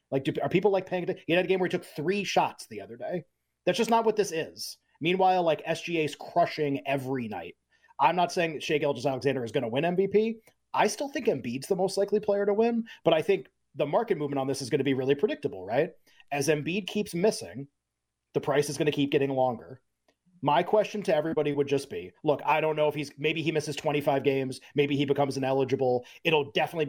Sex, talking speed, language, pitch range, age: male, 230 wpm, English, 140-175 Hz, 30-49